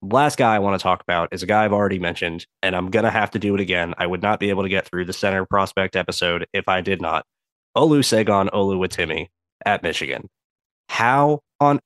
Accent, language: American, English